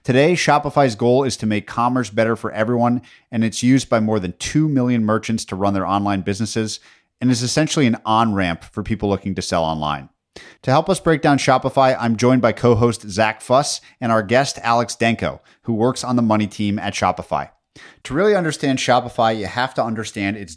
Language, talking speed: English, 200 wpm